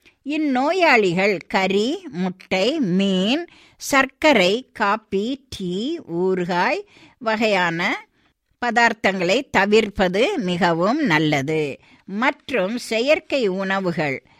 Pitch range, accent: 175-265 Hz, native